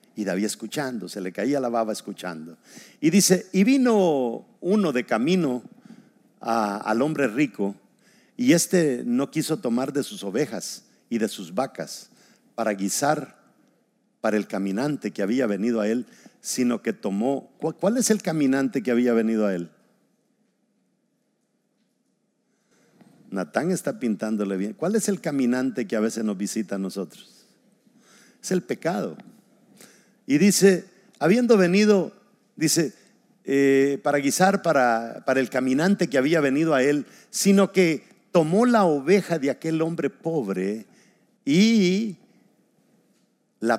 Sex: male